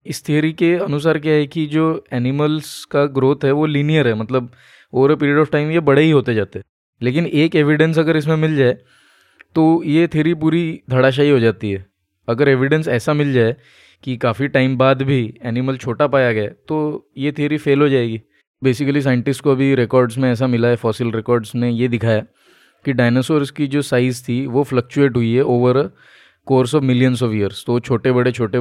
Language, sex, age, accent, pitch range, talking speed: Hindi, male, 20-39, native, 120-150 Hz, 200 wpm